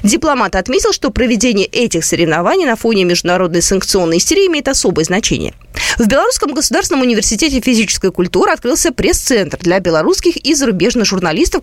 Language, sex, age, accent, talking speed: Russian, female, 20-39, native, 140 wpm